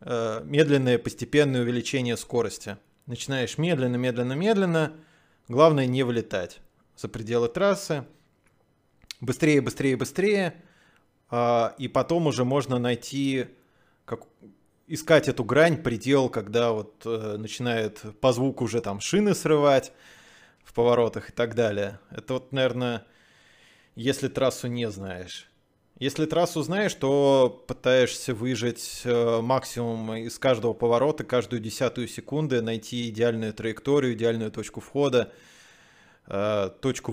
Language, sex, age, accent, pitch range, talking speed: Russian, male, 20-39, native, 115-135 Hz, 100 wpm